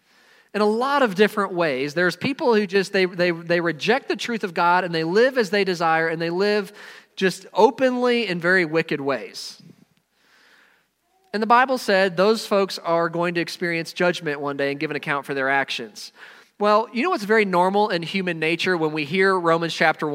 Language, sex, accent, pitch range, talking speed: English, male, American, 170-215 Hz, 200 wpm